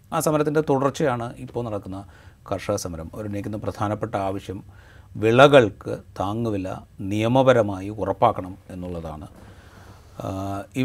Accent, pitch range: native, 95-120 Hz